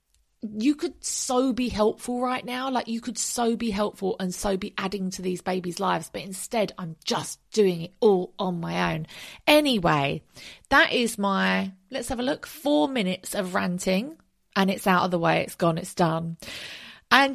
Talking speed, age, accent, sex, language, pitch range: 185 wpm, 30-49, British, female, English, 180-230 Hz